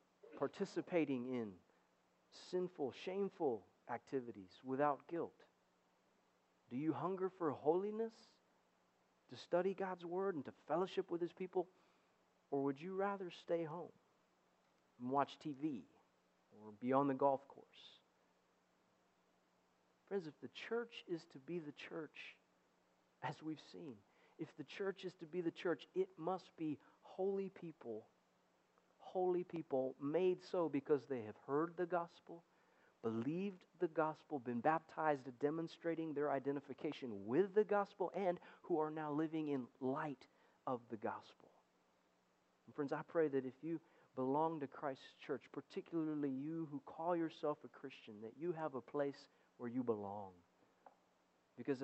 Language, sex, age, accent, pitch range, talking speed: English, male, 40-59, American, 130-175 Hz, 140 wpm